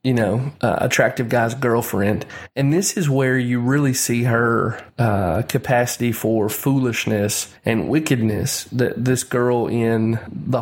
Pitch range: 110-130 Hz